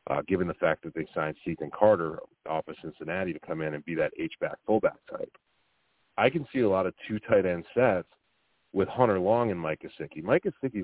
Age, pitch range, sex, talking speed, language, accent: 30-49, 90-120 Hz, male, 215 wpm, English, American